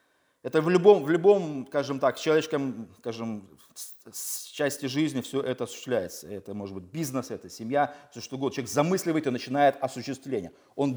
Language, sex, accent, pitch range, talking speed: Russian, male, native, 135-165 Hz, 165 wpm